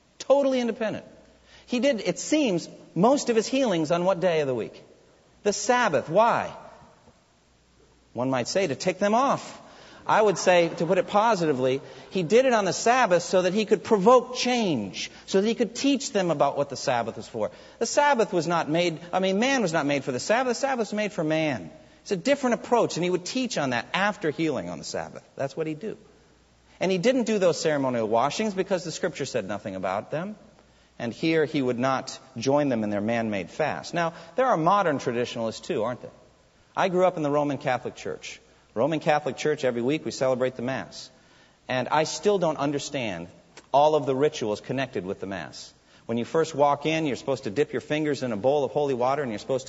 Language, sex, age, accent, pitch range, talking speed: English, male, 50-69, American, 135-205 Hz, 215 wpm